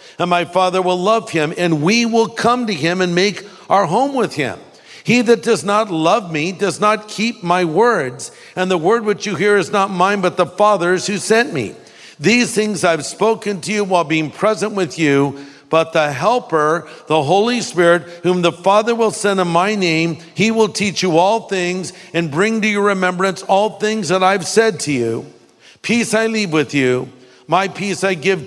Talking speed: 200 wpm